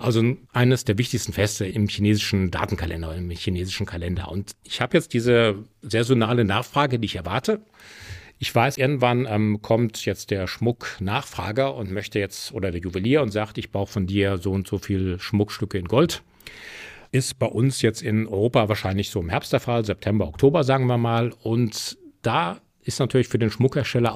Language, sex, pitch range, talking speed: German, male, 95-120 Hz, 180 wpm